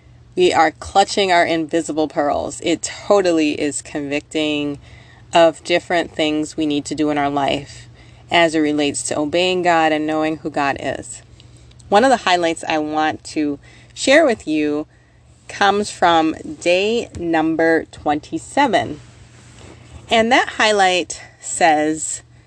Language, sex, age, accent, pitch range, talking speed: English, female, 30-49, American, 140-185 Hz, 135 wpm